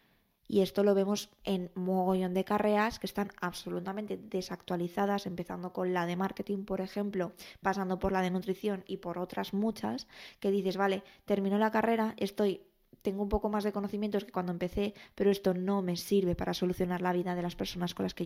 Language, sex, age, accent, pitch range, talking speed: Spanish, female, 20-39, Spanish, 185-205 Hz, 195 wpm